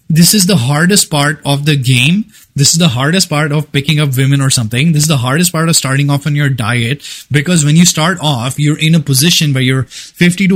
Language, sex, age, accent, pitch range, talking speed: English, male, 20-39, Indian, 135-160 Hz, 245 wpm